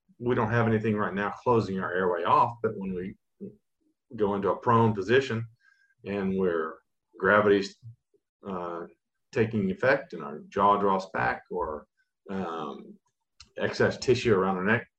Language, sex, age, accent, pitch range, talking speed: English, male, 40-59, American, 100-140 Hz, 145 wpm